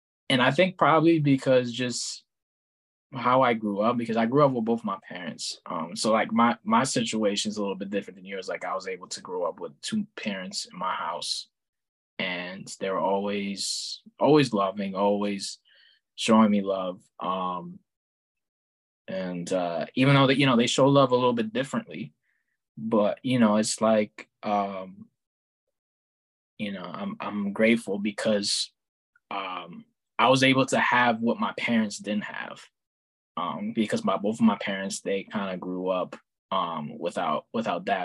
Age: 20-39